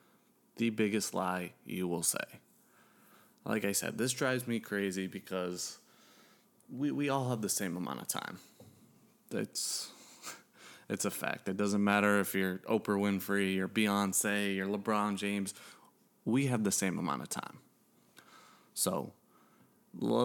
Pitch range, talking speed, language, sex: 95-110 Hz, 140 wpm, English, male